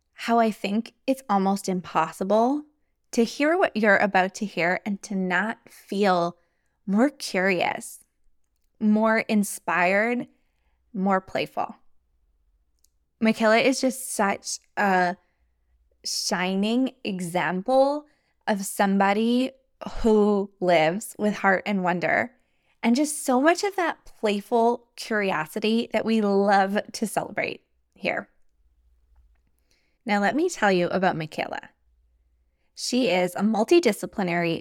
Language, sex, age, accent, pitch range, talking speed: English, female, 20-39, American, 175-225 Hz, 110 wpm